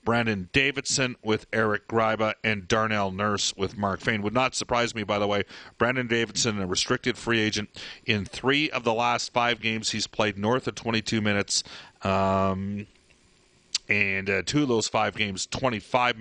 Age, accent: 40-59, American